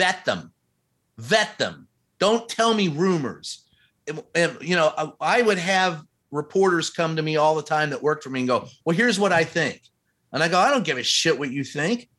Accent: American